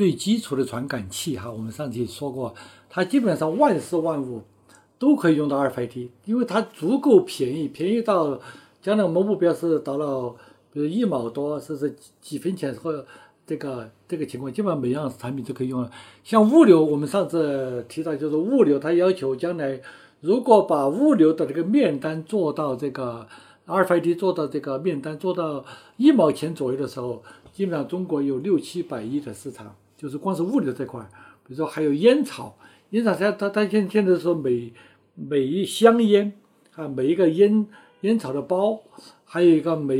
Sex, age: male, 60-79